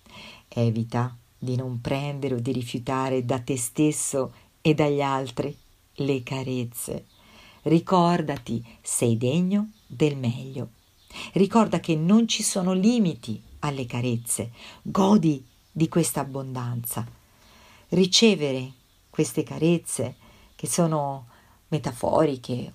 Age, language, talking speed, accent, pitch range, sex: 50-69, Italian, 100 wpm, native, 125-180 Hz, female